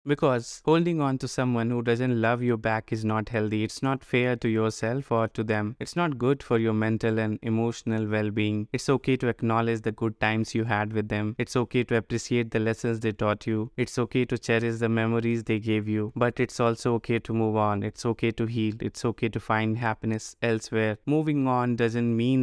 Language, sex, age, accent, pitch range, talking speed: English, male, 20-39, Indian, 110-120 Hz, 215 wpm